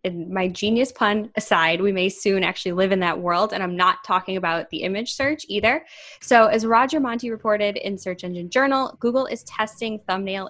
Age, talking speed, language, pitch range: 20-39, 200 wpm, English, 175-225 Hz